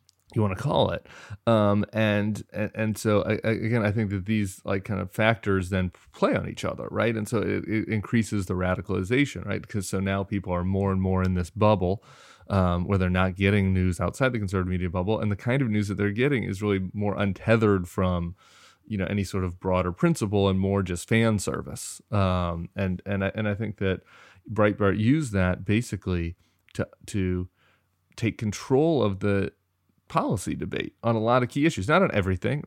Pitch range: 95-110 Hz